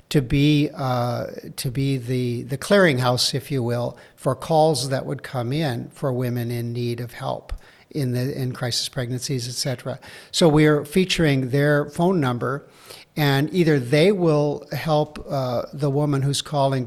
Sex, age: male, 60-79